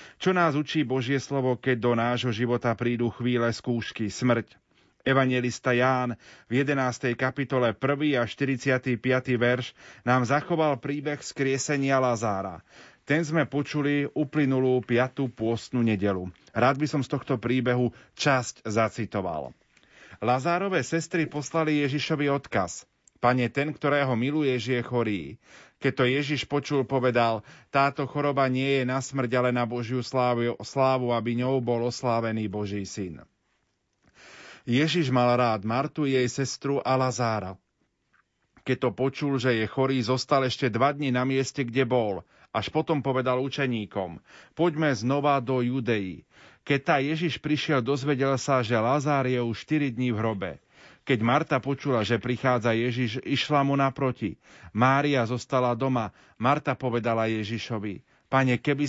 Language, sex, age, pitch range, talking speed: Slovak, male, 30-49, 120-140 Hz, 140 wpm